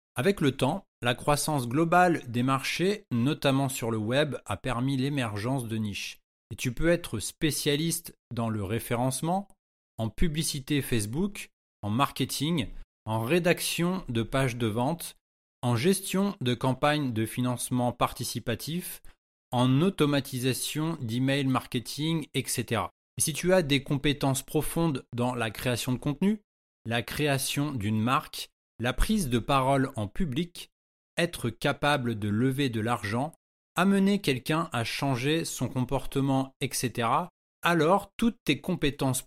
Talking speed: 130 wpm